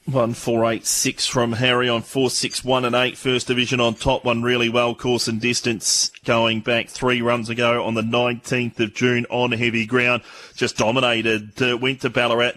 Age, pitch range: 30-49, 115-125 Hz